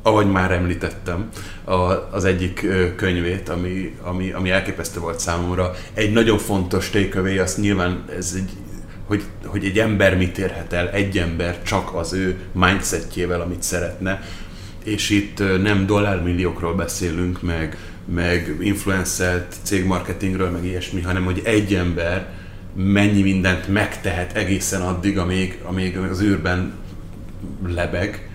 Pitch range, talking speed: 90-100 Hz, 130 wpm